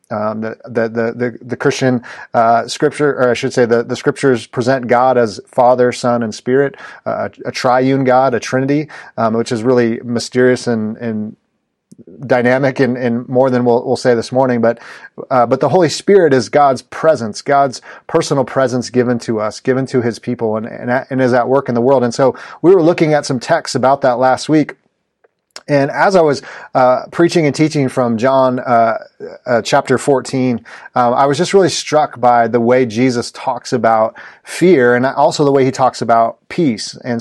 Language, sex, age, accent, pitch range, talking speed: English, male, 30-49, American, 120-135 Hz, 195 wpm